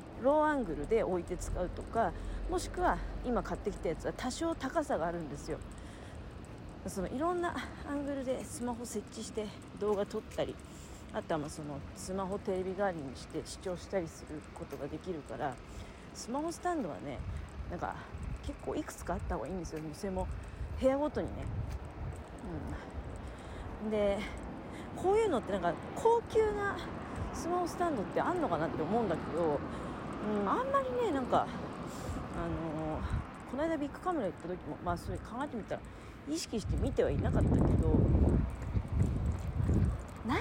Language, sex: Japanese, female